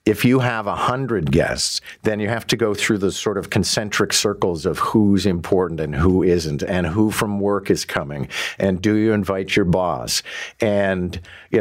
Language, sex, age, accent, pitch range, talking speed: English, male, 50-69, American, 90-110 Hz, 190 wpm